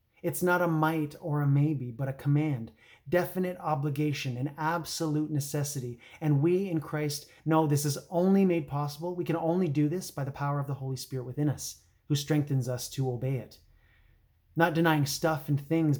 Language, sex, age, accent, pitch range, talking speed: English, male, 30-49, American, 130-155 Hz, 190 wpm